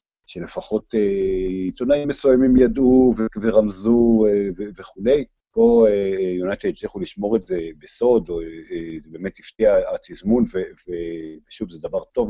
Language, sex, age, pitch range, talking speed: Hebrew, male, 50-69, 90-135 Hz, 145 wpm